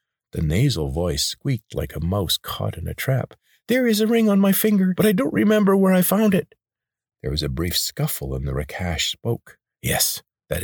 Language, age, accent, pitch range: English, 40-59, American, 80-130 Hz